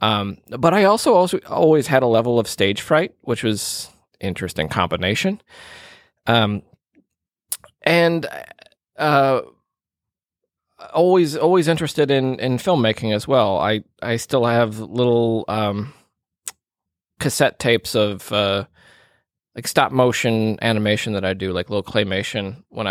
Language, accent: English, American